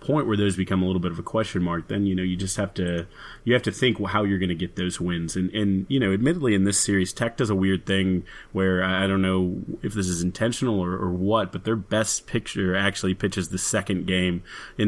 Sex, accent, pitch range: male, American, 90-100 Hz